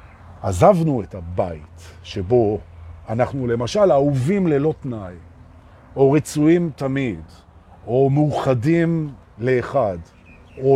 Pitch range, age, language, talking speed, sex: 105-170 Hz, 50-69, Hebrew, 90 wpm, male